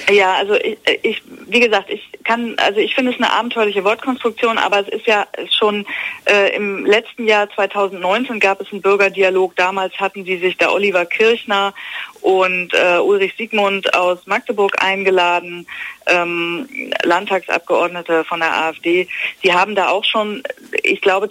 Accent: German